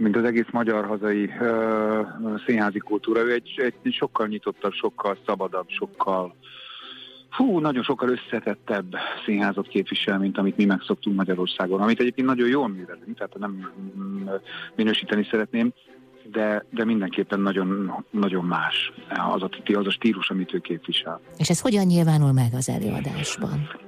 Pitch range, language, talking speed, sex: 100-130 Hz, Hungarian, 130 wpm, male